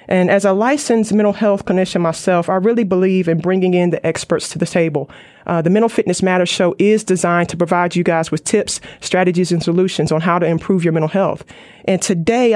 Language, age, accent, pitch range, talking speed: English, 30-49, American, 185-225 Hz, 215 wpm